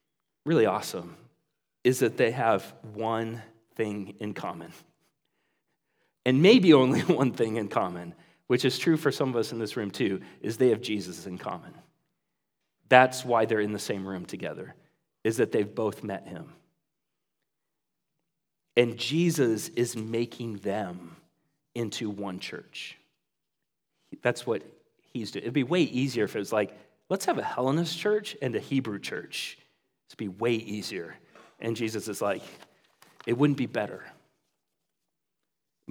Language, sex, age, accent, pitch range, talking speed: English, male, 40-59, American, 110-150 Hz, 150 wpm